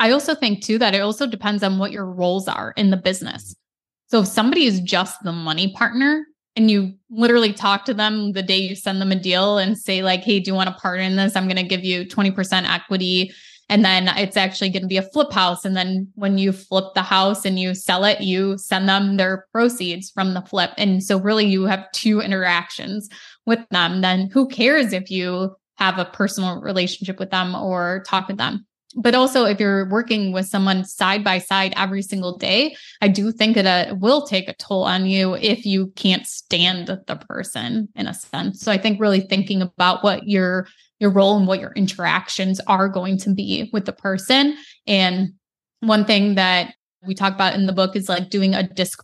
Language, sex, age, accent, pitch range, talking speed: English, female, 20-39, American, 185-205 Hz, 215 wpm